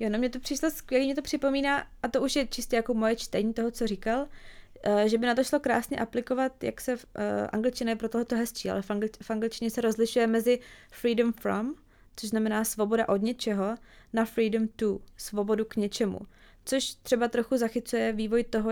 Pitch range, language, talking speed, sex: 210-240 Hz, Czech, 190 wpm, female